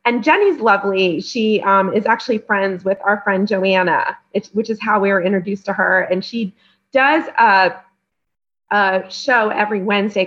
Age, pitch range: 30-49, 195-235 Hz